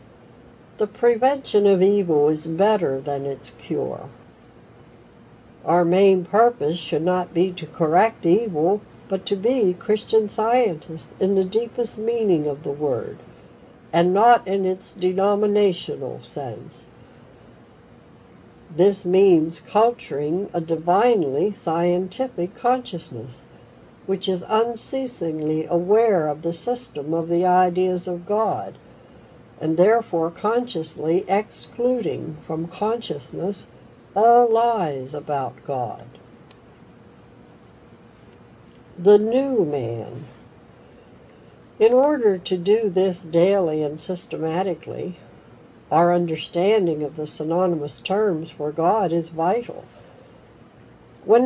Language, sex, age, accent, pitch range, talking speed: English, female, 60-79, American, 160-215 Hz, 100 wpm